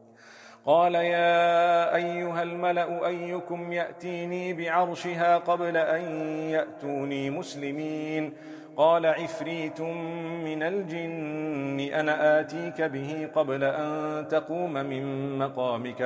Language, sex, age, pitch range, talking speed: German, male, 40-59, 135-170 Hz, 85 wpm